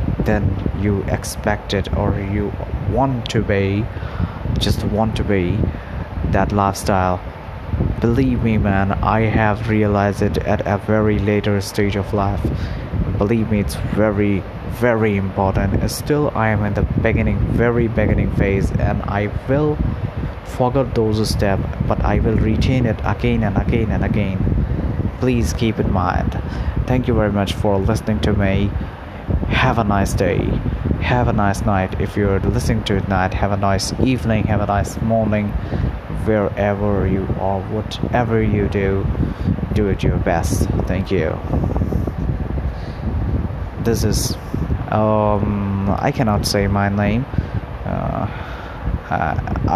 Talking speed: 140 wpm